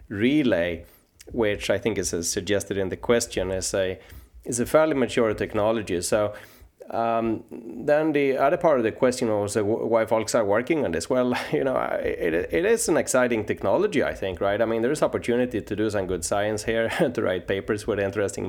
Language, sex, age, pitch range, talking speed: English, male, 30-49, 95-115 Hz, 190 wpm